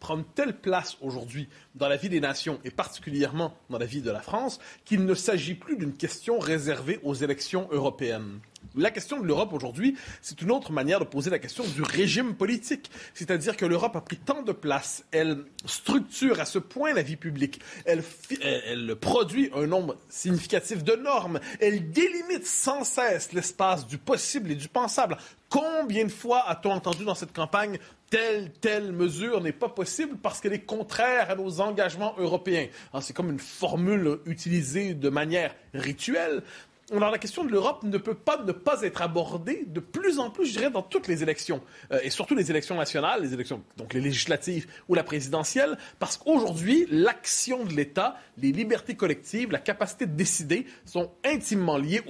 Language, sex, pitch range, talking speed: French, male, 150-220 Hz, 185 wpm